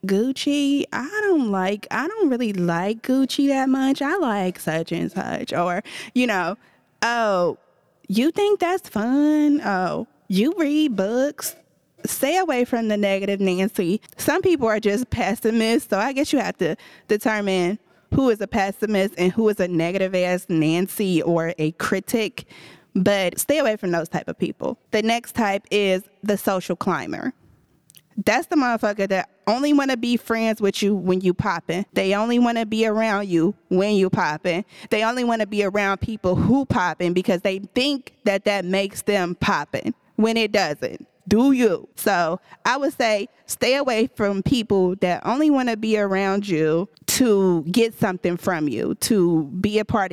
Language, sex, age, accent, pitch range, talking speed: English, female, 20-39, American, 185-240 Hz, 175 wpm